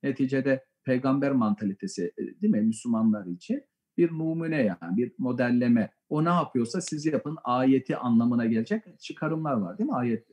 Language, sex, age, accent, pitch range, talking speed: Turkish, male, 50-69, native, 140-195 Hz, 145 wpm